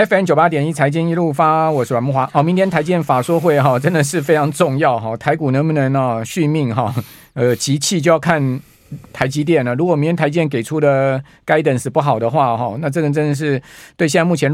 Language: Chinese